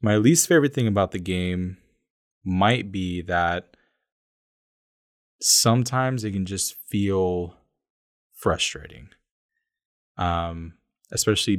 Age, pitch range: 20-39, 90-110 Hz